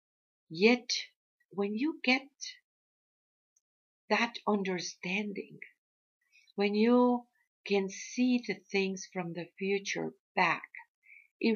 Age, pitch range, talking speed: 50-69, 180-245 Hz, 90 wpm